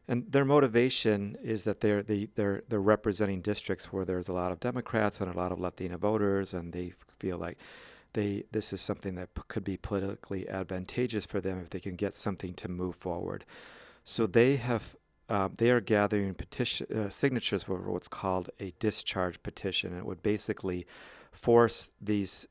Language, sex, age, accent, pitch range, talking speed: English, male, 40-59, American, 95-110 Hz, 185 wpm